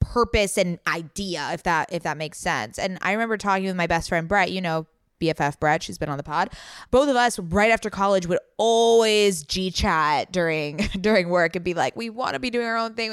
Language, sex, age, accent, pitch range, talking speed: English, female, 20-39, American, 180-230 Hz, 235 wpm